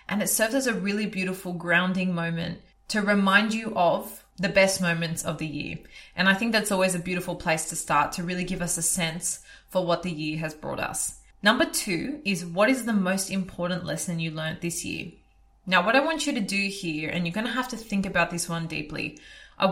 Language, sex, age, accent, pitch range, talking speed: English, female, 20-39, Australian, 170-200 Hz, 230 wpm